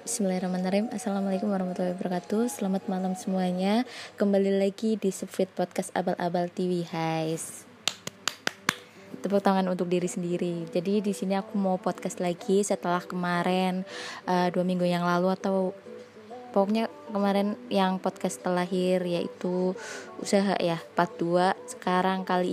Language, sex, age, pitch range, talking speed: Indonesian, female, 20-39, 185-210 Hz, 125 wpm